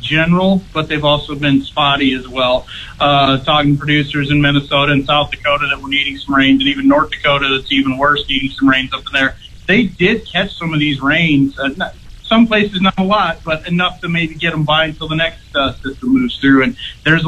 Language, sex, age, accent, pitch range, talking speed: English, male, 30-49, American, 135-160 Hz, 220 wpm